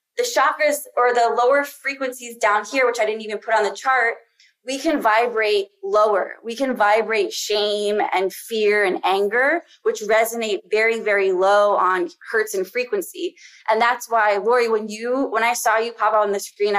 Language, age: English, 20-39